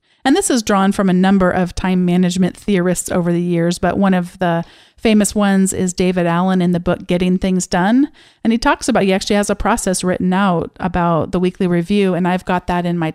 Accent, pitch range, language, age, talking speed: American, 180-215 Hz, English, 40-59, 230 wpm